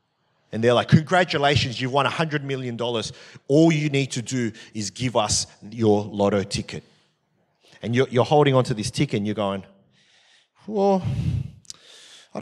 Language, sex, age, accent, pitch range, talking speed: English, male, 30-49, Australian, 110-150 Hz, 155 wpm